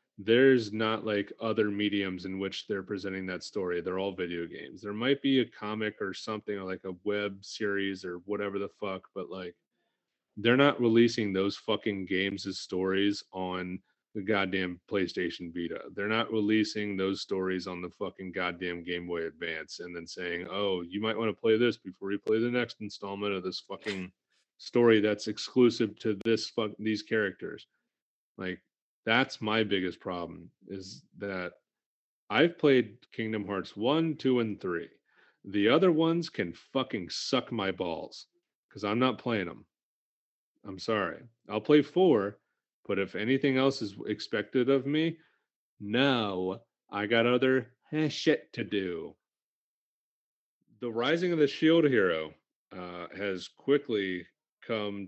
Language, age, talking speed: English, 30-49, 155 wpm